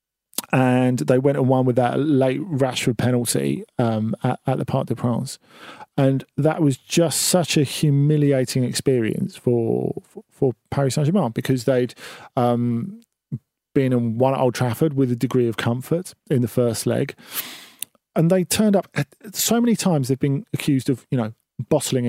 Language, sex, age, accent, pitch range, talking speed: English, male, 40-59, British, 120-150 Hz, 165 wpm